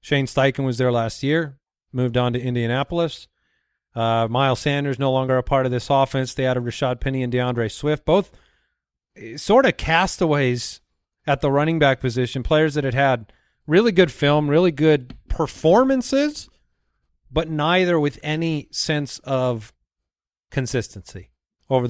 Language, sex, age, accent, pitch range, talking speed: English, male, 40-59, American, 120-150 Hz, 150 wpm